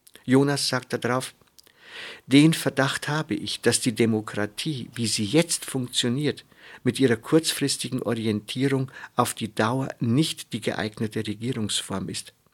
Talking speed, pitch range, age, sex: 125 wpm, 115-145 Hz, 50-69, male